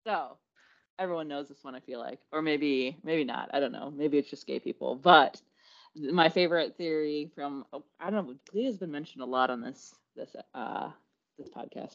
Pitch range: 130-155 Hz